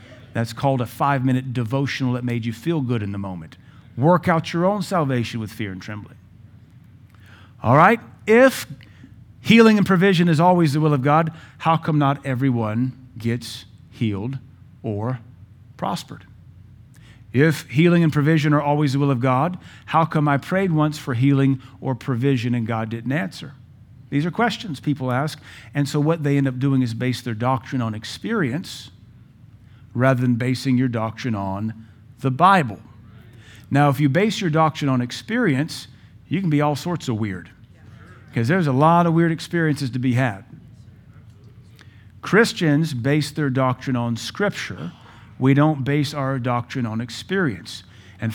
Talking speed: 160 wpm